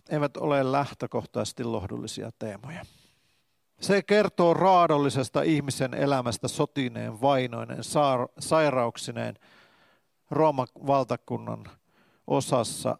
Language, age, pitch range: Finnish, 50-69, 125-160 Hz